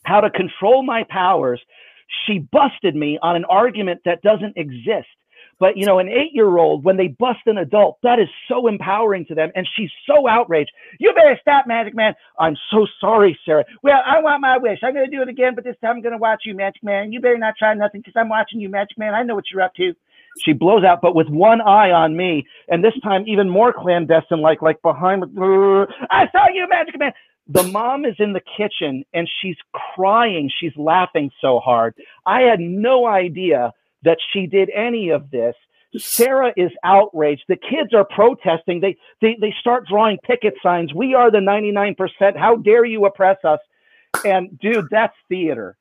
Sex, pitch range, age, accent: male, 180-240 Hz, 40-59, American